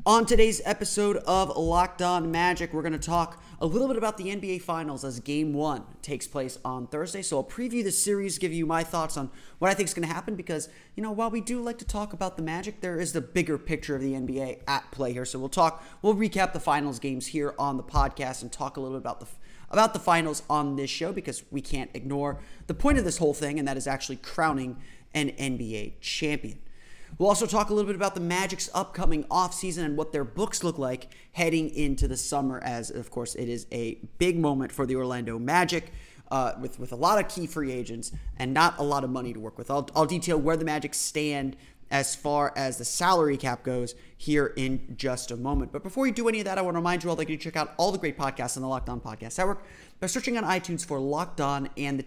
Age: 30-49